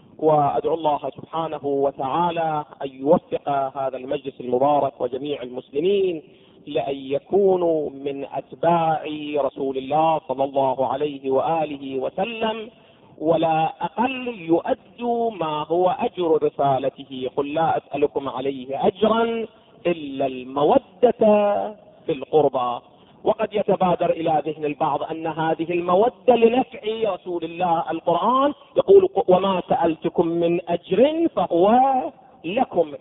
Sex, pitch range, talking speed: male, 140-185 Hz, 100 wpm